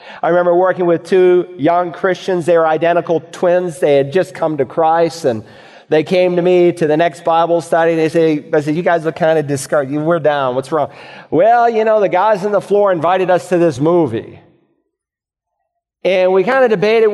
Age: 40-59